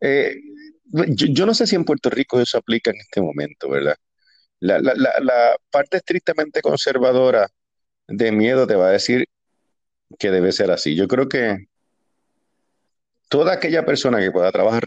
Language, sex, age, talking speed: Spanish, male, 40-59, 165 wpm